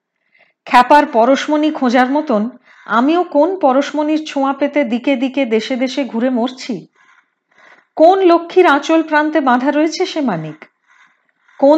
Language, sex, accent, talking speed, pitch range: Hindi, female, native, 105 wpm, 205-290 Hz